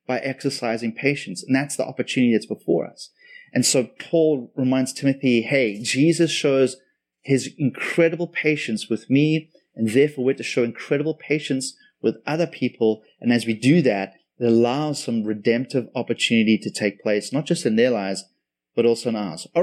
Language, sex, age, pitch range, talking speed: English, male, 30-49, 125-165 Hz, 170 wpm